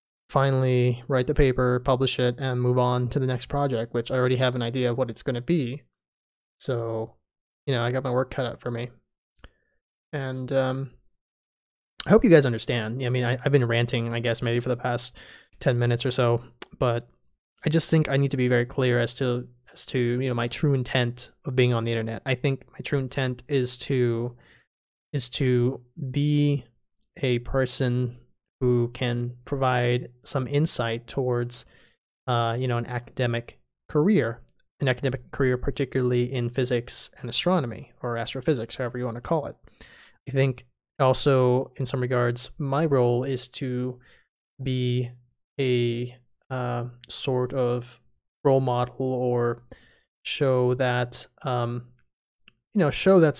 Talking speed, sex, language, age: 165 wpm, male, English, 20-39